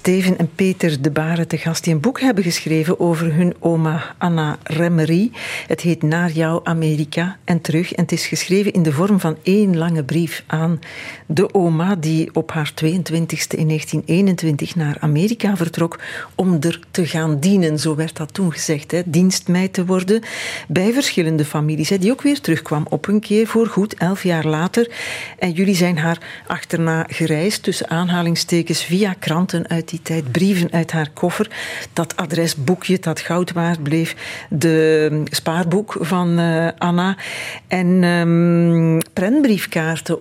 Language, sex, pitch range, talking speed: Dutch, female, 160-190 Hz, 160 wpm